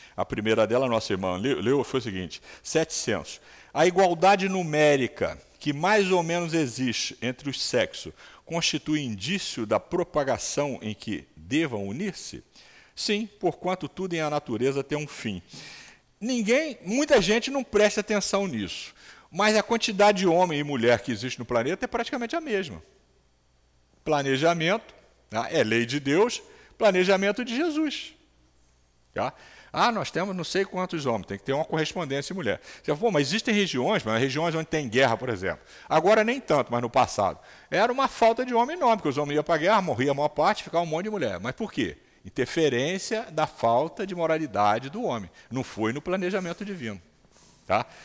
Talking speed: 175 wpm